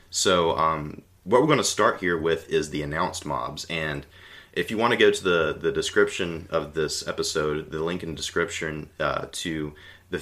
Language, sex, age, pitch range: English, male, 30-49, 80-95 Hz